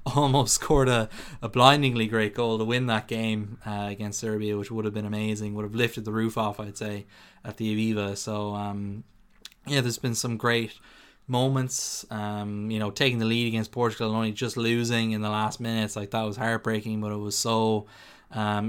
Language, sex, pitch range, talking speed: English, male, 105-115 Hz, 200 wpm